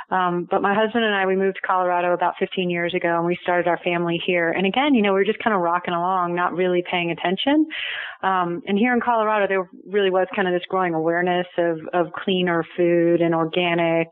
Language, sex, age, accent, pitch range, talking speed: English, female, 30-49, American, 175-200 Hz, 230 wpm